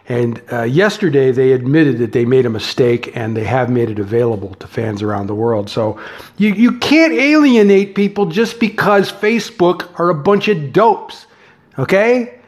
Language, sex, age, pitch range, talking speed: English, male, 50-69, 125-195 Hz, 175 wpm